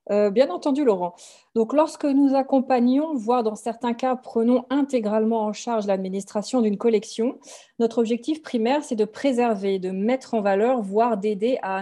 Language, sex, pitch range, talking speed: French, female, 205-255 Hz, 160 wpm